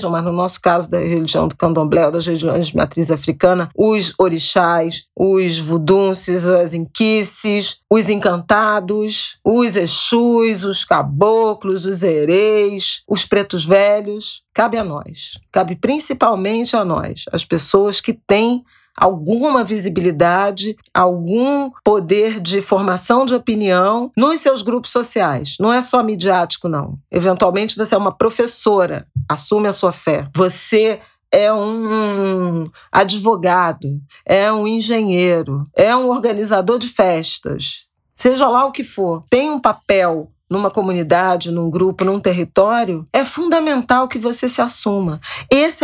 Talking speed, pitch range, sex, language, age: 130 wpm, 180-230 Hz, female, Portuguese, 40-59